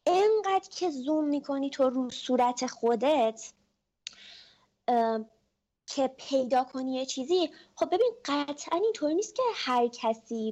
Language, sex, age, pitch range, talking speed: Persian, female, 20-39, 230-315 Hz, 125 wpm